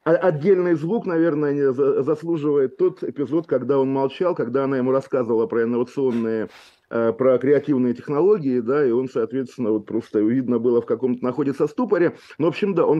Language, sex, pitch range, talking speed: Russian, male, 115-145 Hz, 160 wpm